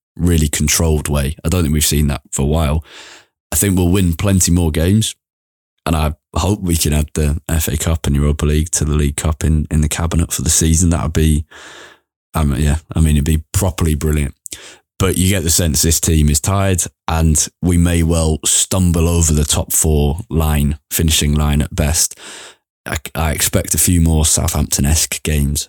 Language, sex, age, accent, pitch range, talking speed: English, male, 20-39, British, 75-90 Hz, 195 wpm